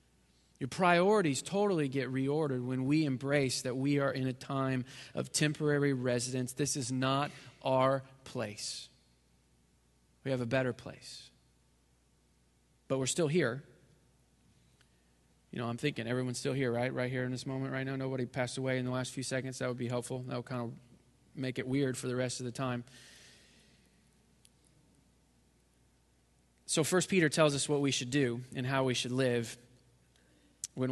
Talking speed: 165 wpm